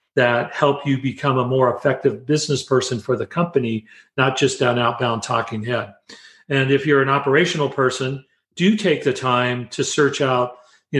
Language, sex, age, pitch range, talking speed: English, male, 40-59, 125-150 Hz, 175 wpm